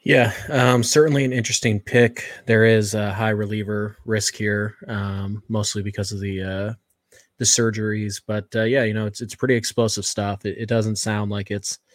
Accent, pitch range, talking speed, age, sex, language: American, 100-115 Hz, 185 wpm, 20-39, male, English